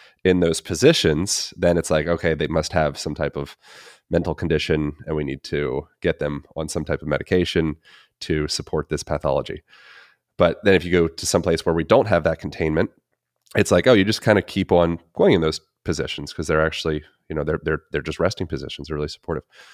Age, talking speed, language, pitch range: 30-49, 215 wpm, English, 80-95 Hz